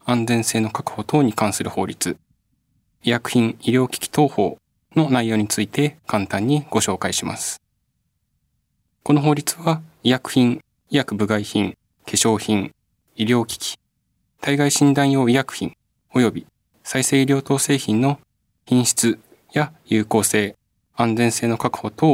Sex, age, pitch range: male, 20-39, 110-140 Hz